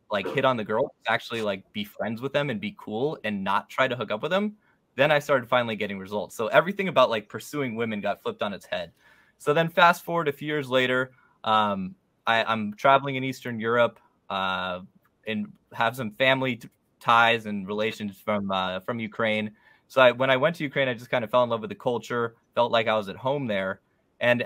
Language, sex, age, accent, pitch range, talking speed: English, male, 20-39, American, 105-130 Hz, 225 wpm